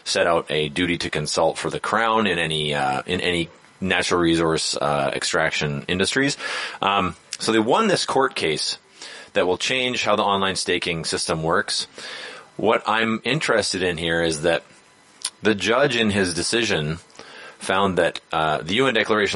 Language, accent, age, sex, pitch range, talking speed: English, American, 30-49, male, 80-110 Hz, 165 wpm